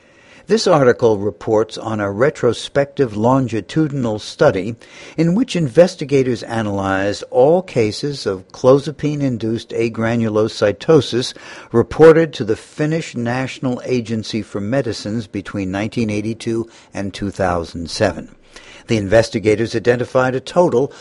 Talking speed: 95 wpm